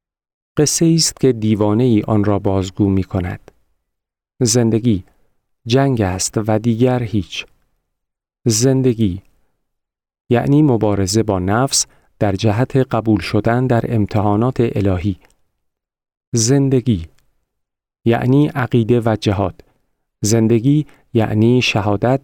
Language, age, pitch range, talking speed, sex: Persian, 40-59, 100-130 Hz, 95 wpm, male